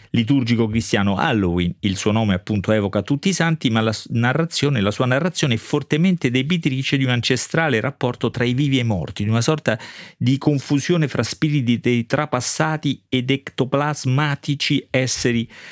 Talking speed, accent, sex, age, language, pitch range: 155 wpm, native, male, 40-59, Italian, 110-135 Hz